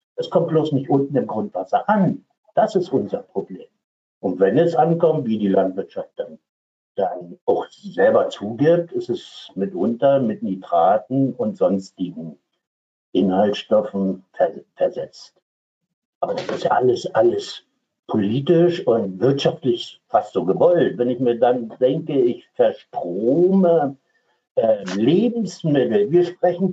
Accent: German